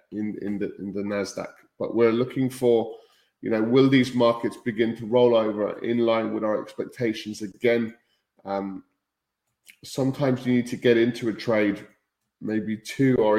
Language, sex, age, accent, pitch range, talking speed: English, male, 20-39, British, 105-120 Hz, 165 wpm